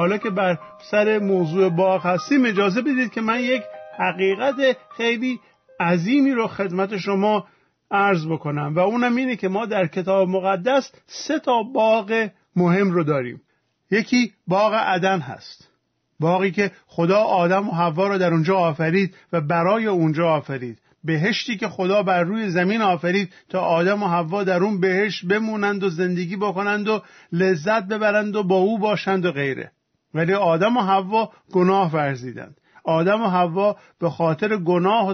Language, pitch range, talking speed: Persian, 175-210 Hz, 155 wpm